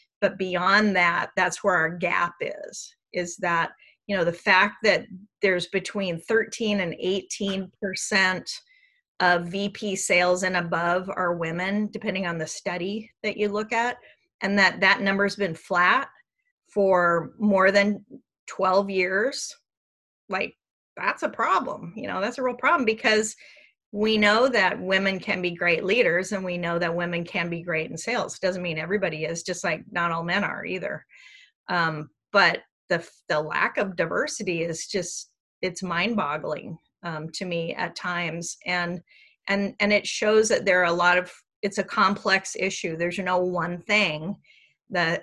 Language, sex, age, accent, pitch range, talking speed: English, female, 30-49, American, 175-205 Hz, 165 wpm